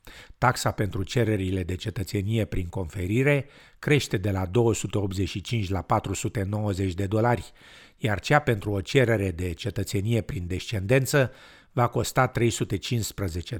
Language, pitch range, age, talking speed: Romanian, 100-130 Hz, 50-69, 120 wpm